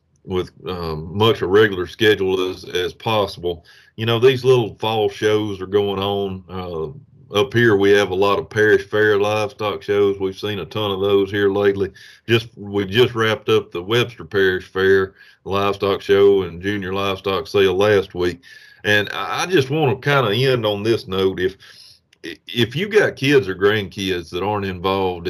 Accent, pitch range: American, 95-120 Hz